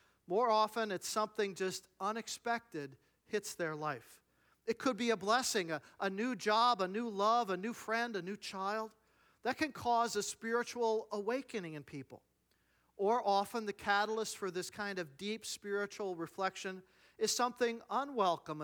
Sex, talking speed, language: male, 160 wpm, English